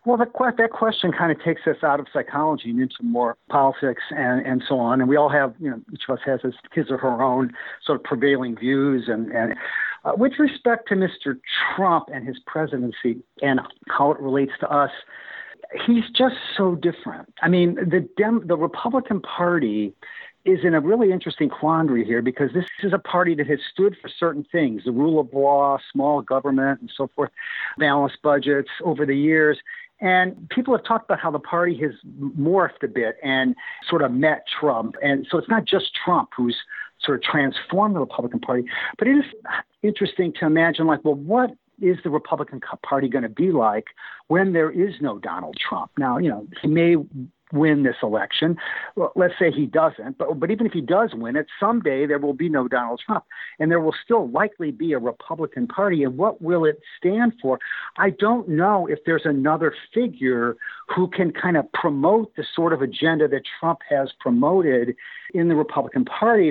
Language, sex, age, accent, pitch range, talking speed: English, male, 50-69, American, 140-195 Hz, 195 wpm